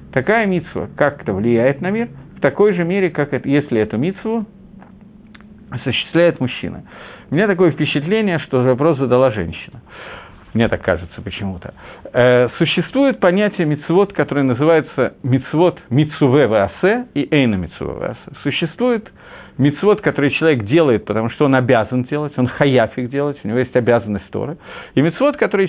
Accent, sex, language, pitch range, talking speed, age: native, male, Russian, 130-190 Hz, 140 wpm, 50-69